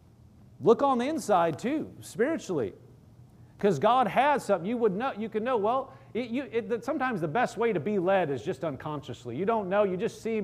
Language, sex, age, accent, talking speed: English, male, 40-59, American, 205 wpm